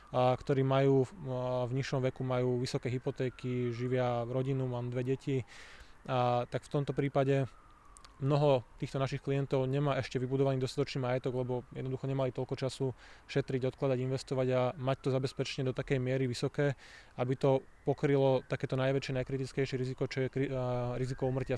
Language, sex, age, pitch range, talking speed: Slovak, male, 20-39, 125-135 Hz, 160 wpm